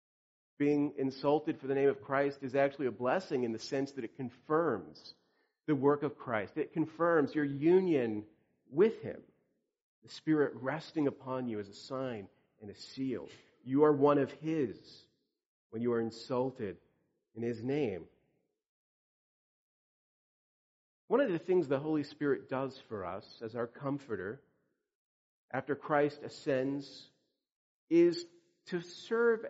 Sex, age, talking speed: male, 40-59, 140 wpm